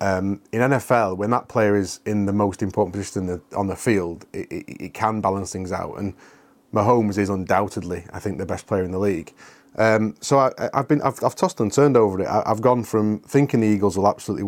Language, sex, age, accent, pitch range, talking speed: English, male, 30-49, British, 100-115 Hz, 230 wpm